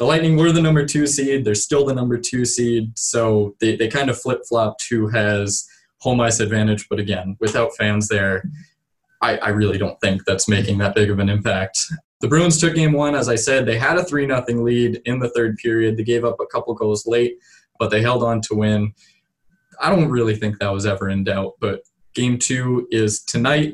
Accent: American